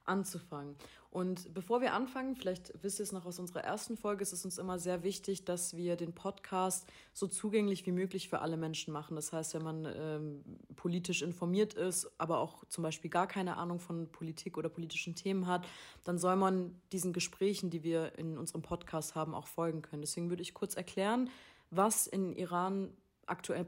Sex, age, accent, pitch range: female, 30-49, German, 165-195 Hz